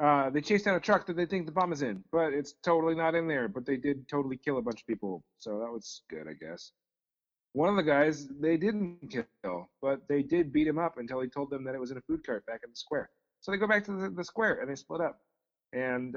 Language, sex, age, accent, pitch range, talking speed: English, male, 40-59, American, 130-175 Hz, 280 wpm